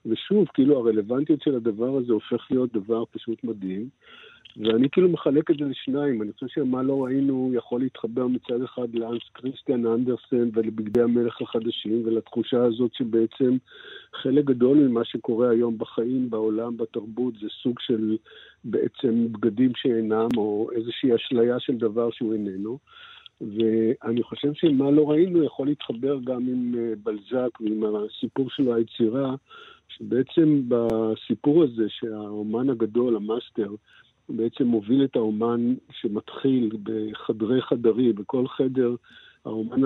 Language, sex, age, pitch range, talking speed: Hebrew, male, 50-69, 115-135 Hz, 130 wpm